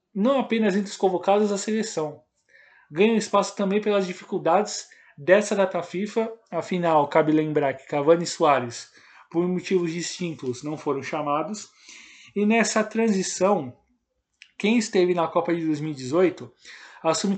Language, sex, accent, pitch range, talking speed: Portuguese, male, Brazilian, 165-205 Hz, 130 wpm